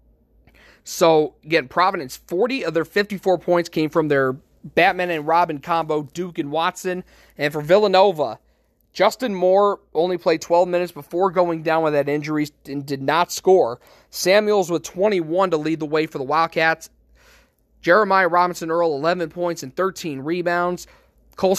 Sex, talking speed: male, 155 wpm